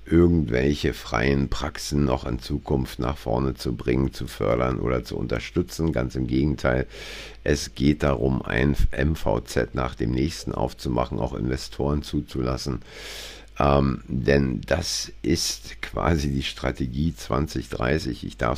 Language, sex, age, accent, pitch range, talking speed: German, male, 50-69, German, 65-80 Hz, 130 wpm